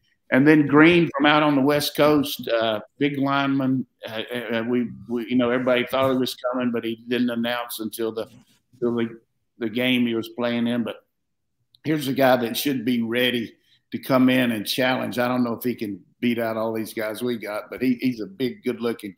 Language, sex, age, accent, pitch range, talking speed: English, male, 50-69, American, 115-125 Hz, 215 wpm